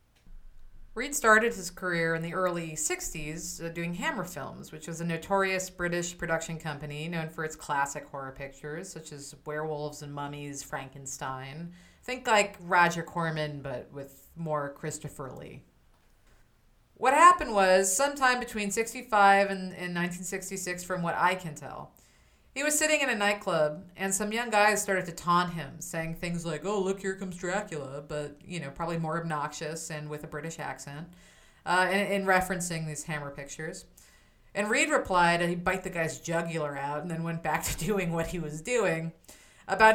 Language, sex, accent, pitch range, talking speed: English, female, American, 155-195 Hz, 170 wpm